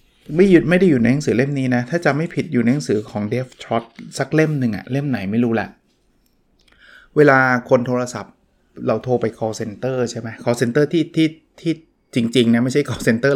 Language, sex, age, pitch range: Thai, male, 20-39, 110-135 Hz